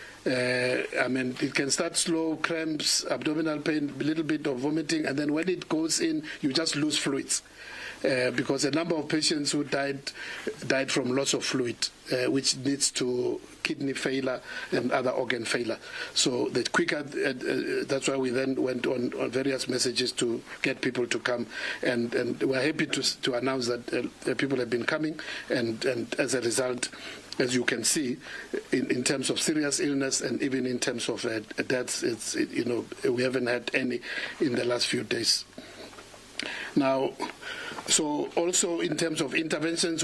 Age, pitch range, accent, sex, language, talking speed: 50-69, 130-160 Hz, South African, male, English, 185 wpm